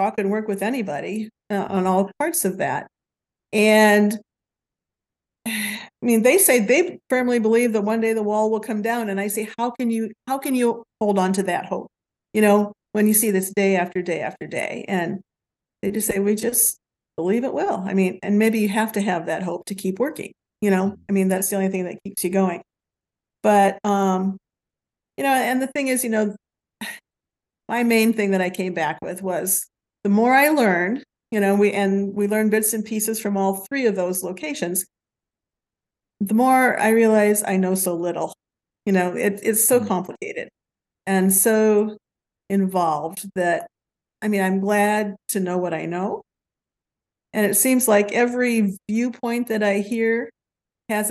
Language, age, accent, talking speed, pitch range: English, 50-69, American, 190 wpm, 195-225 Hz